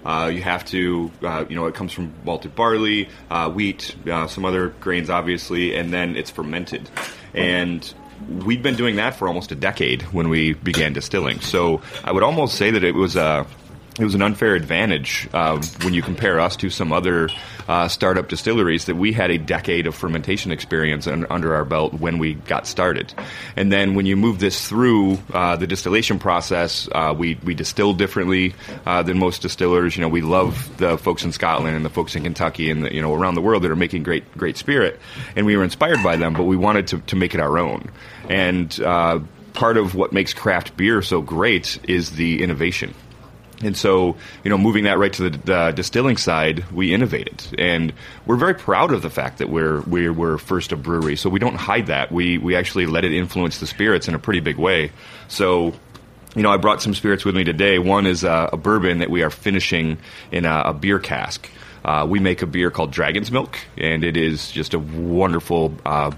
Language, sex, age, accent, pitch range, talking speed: English, male, 30-49, American, 80-100 Hz, 215 wpm